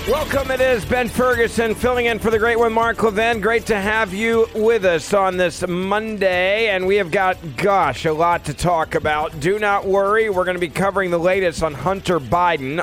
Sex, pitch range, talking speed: male, 130-195 Hz, 210 wpm